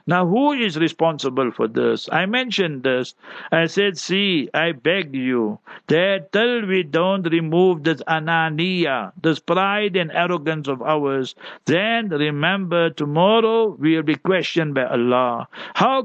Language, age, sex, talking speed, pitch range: English, 60-79, male, 140 wpm, 155-195 Hz